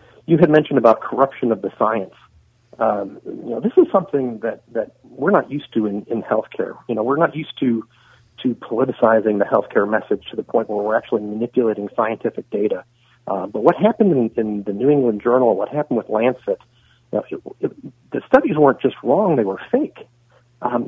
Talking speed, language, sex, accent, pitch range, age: 205 wpm, English, male, American, 115-145 Hz, 50-69